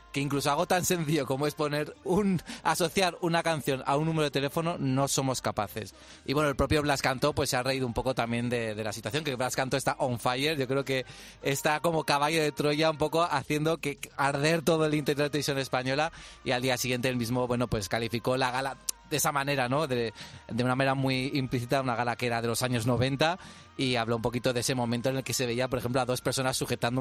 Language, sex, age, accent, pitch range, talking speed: Spanish, male, 30-49, Spanish, 125-150 Hz, 240 wpm